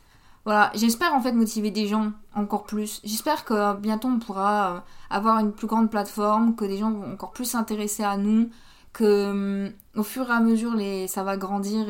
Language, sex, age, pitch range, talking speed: French, female, 20-39, 195-220 Hz, 195 wpm